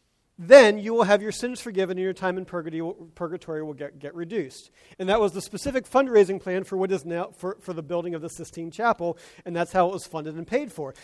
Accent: American